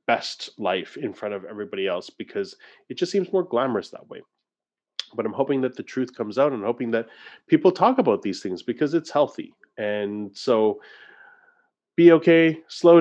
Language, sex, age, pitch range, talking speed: English, male, 30-49, 115-160 Hz, 180 wpm